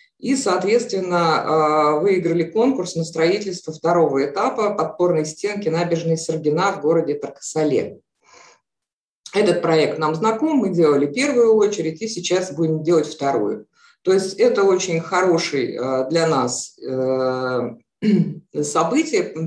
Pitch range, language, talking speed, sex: 145-185 Hz, Russian, 110 wpm, female